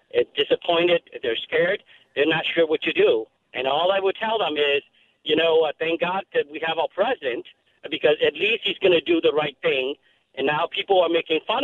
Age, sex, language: 50-69, male, English